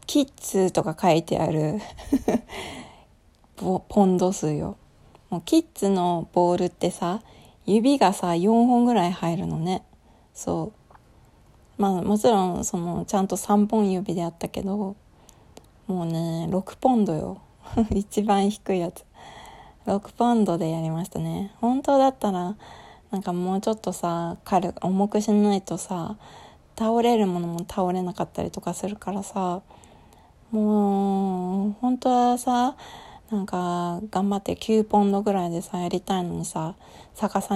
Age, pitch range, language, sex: 20-39, 180-215 Hz, Japanese, female